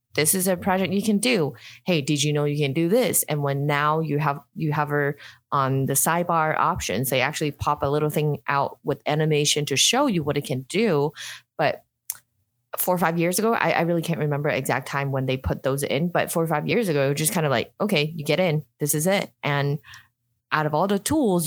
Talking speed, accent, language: 240 wpm, American, English